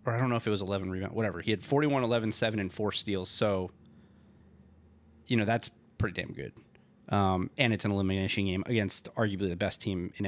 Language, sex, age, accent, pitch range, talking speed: English, male, 30-49, American, 95-115 Hz, 215 wpm